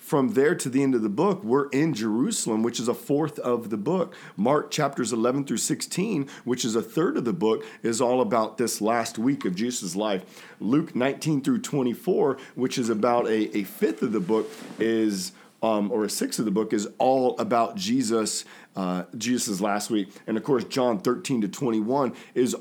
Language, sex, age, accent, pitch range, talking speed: English, male, 40-59, American, 105-140 Hz, 200 wpm